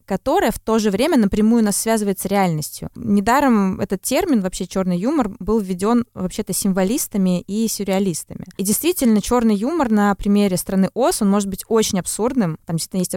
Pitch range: 185-225 Hz